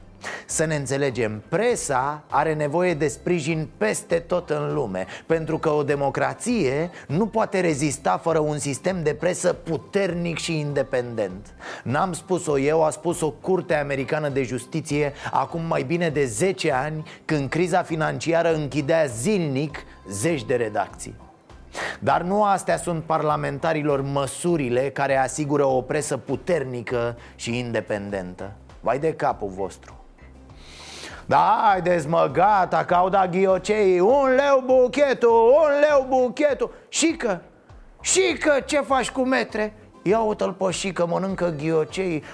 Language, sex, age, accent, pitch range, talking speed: Romanian, male, 30-49, native, 140-185 Hz, 130 wpm